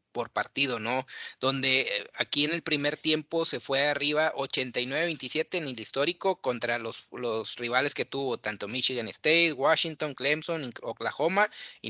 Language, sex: Spanish, male